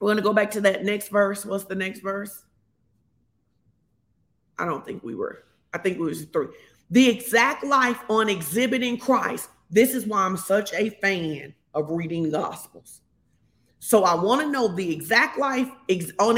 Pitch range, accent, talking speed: 185-255 Hz, American, 175 wpm